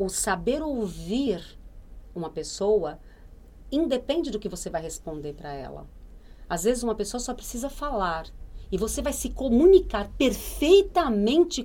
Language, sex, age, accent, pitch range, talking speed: Portuguese, female, 40-59, Brazilian, 160-225 Hz, 135 wpm